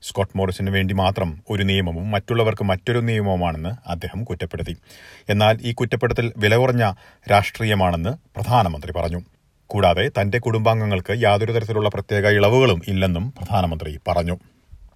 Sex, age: male, 40-59